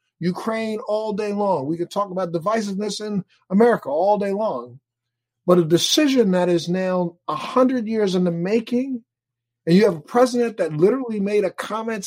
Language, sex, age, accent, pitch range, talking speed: English, male, 50-69, American, 165-220 Hz, 175 wpm